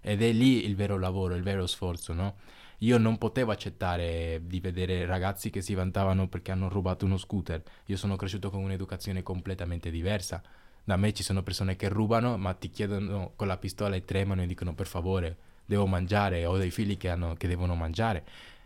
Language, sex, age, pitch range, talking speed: Italian, male, 20-39, 90-110 Hz, 195 wpm